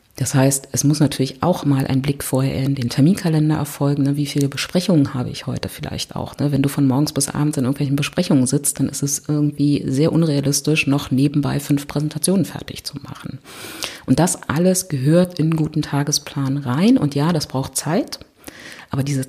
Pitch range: 140-160 Hz